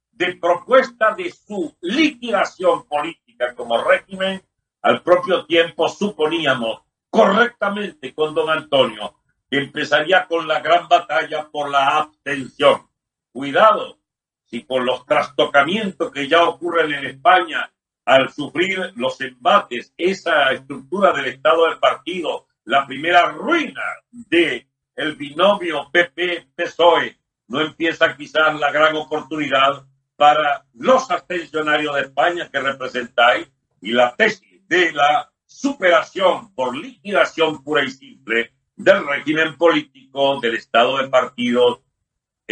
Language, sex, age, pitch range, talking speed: Spanish, male, 60-79, 135-185 Hz, 115 wpm